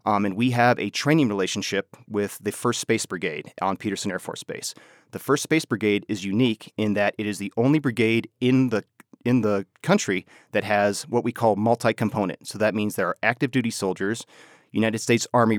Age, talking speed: 30-49, 195 wpm